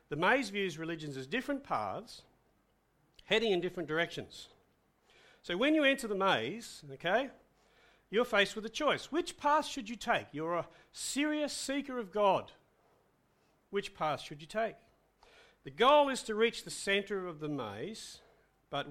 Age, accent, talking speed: 50-69, Australian, 160 wpm